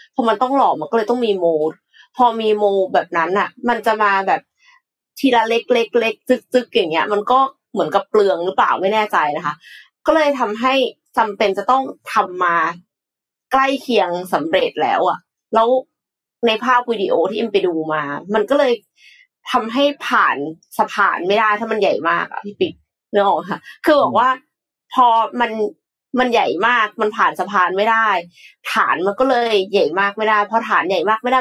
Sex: female